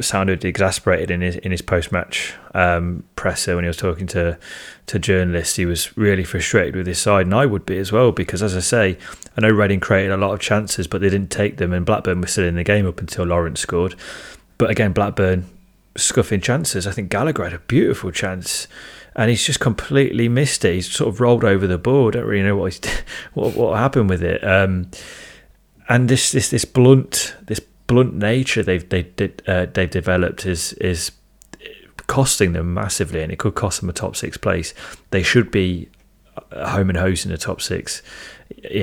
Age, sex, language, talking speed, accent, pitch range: 30-49, male, English, 205 wpm, British, 90-105 Hz